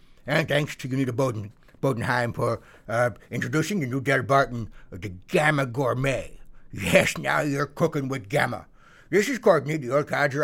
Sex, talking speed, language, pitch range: male, 160 wpm, English, 125-155 Hz